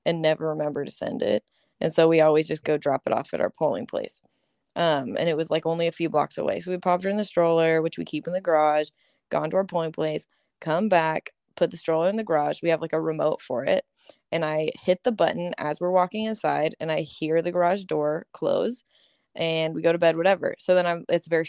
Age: 20-39